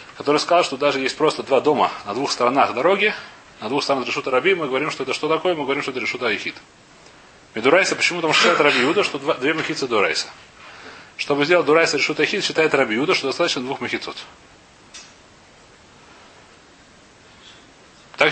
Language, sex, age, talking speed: Russian, male, 30-49, 175 wpm